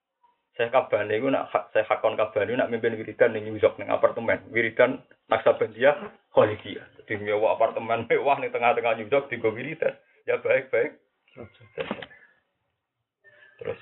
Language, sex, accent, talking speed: Indonesian, male, native, 150 wpm